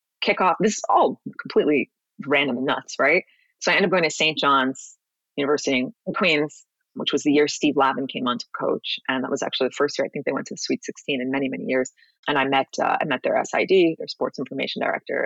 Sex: female